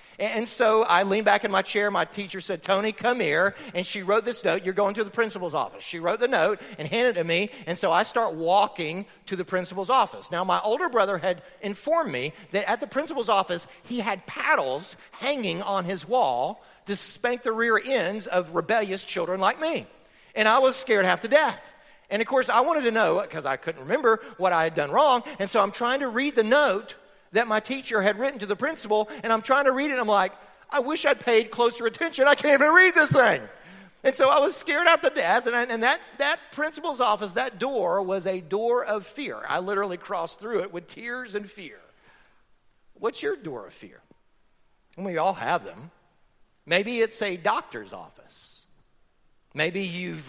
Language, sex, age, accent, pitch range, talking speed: English, male, 40-59, American, 180-240 Hz, 210 wpm